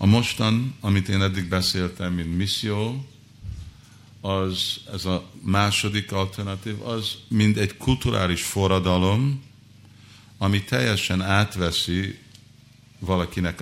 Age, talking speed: 50-69, 95 wpm